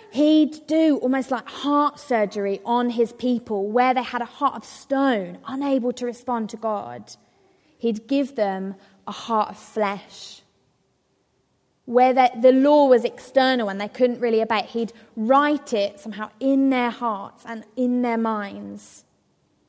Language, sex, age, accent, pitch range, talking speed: English, female, 20-39, British, 210-270 Hz, 155 wpm